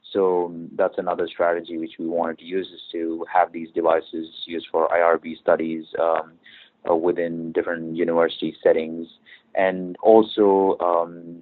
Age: 30-49